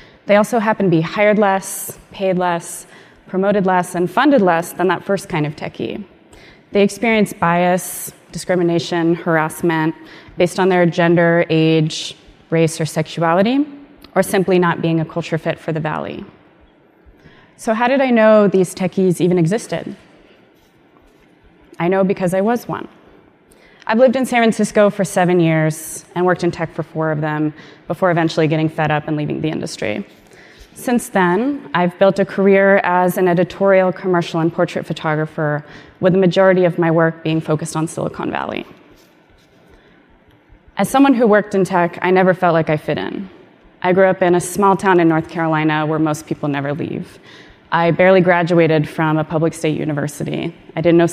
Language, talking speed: English, 170 wpm